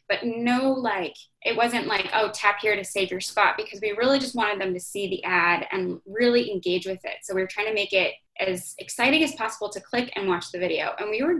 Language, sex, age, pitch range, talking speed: English, female, 10-29, 190-230 Hz, 255 wpm